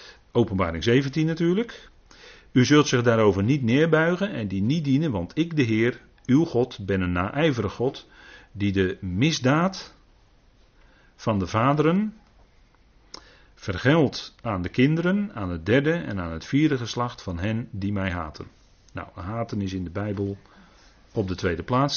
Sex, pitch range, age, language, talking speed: male, 95-140 Hz, 40-59, Dutch, 155 wpm